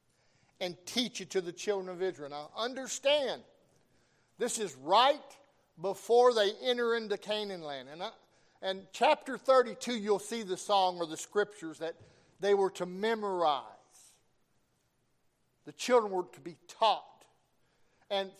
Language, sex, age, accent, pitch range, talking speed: English, male, 50-69, American, 155-240 Hz, 140 wpm